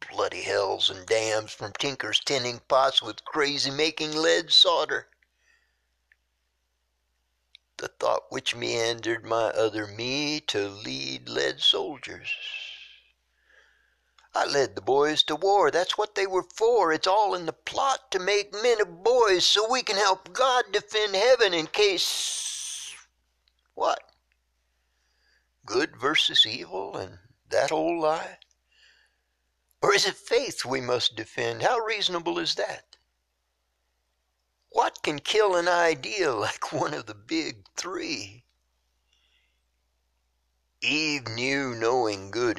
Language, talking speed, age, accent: English, 125 wpm, 60-79, American